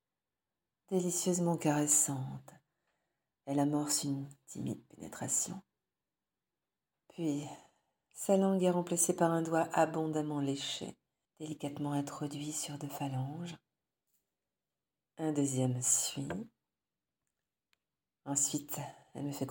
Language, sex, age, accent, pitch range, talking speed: French, female, 50-69, French, 140-175 Hz, 90 wpm